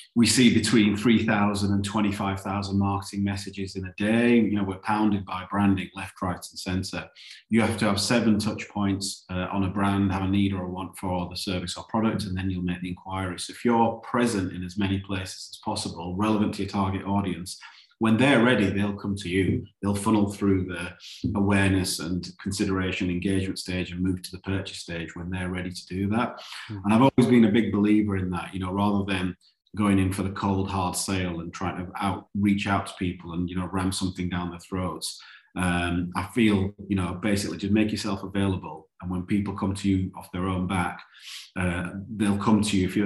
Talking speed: 215 wpm